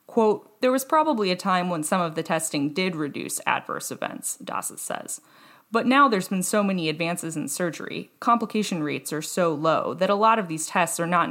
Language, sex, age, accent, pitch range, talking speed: English, female, 20-39, American, 165-215 Hz, 205 wpm